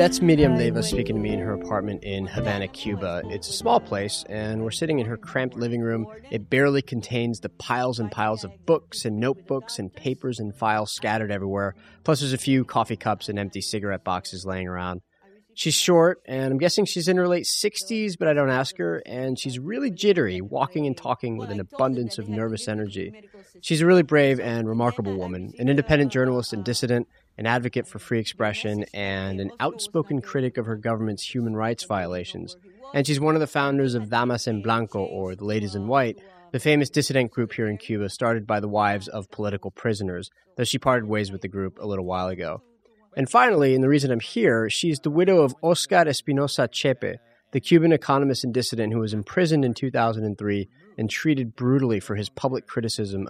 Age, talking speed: 30-49, 200 wpm